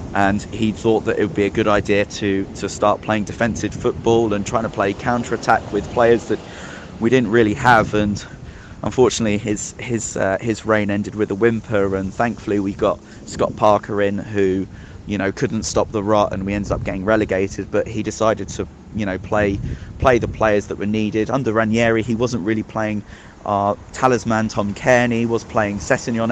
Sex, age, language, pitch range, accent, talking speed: male, 20-39, English, 100-115 Hz, British, 200 wpm